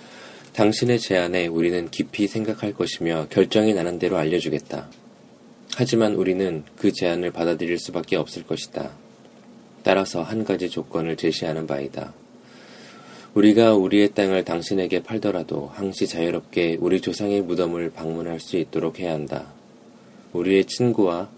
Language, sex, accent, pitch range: Korean, male, native, 80-100 Hz